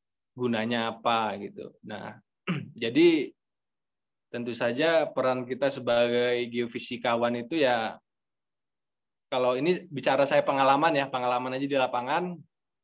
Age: 20-39